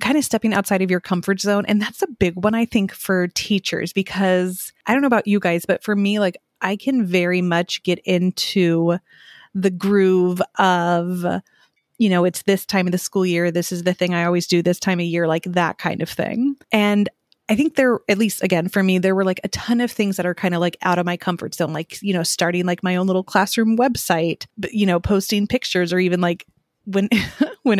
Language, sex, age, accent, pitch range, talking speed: English, female, 20-39, American, 175-205 Hz, 230 wpm